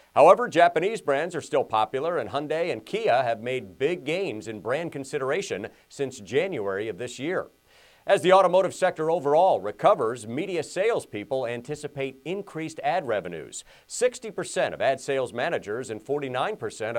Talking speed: 145 wpm